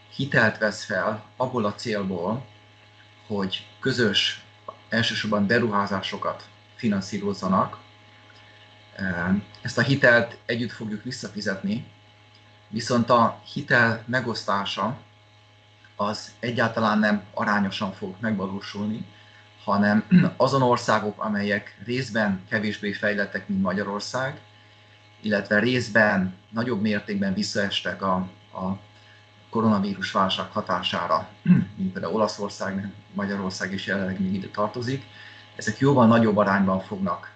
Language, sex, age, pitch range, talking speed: Hungarian, male, 30-49, 100-110 Hz, 95 wpm